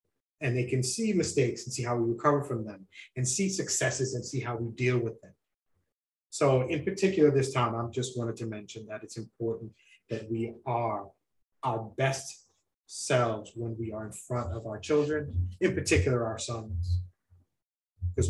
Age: 30-49